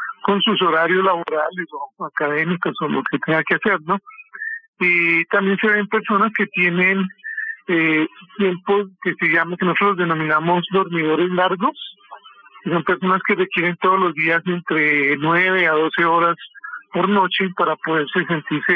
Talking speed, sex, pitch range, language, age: 145 wpm, male, 170-195 Hz, Spanish, 50-69